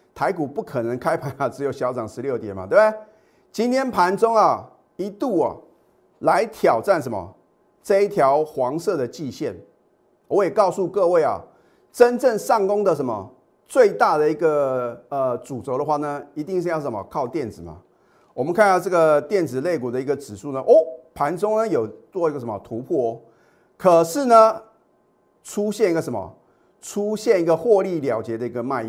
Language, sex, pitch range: Chinese, male, 135-210 Hz